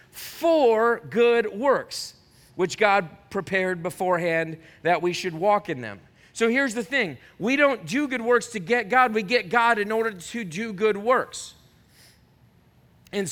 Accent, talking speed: American, 160 wpm